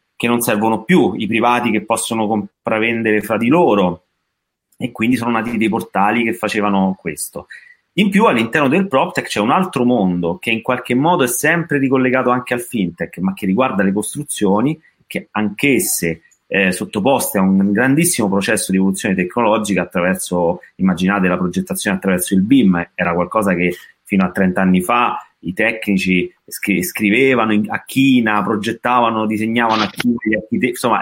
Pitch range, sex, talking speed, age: 95-125 Hz, male, 155 wpm, 30-49